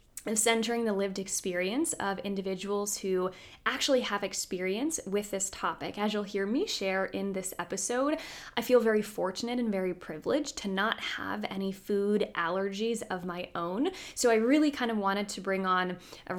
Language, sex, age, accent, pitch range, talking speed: English, female, 20-39, American, 185-245 Hz, 170 wpm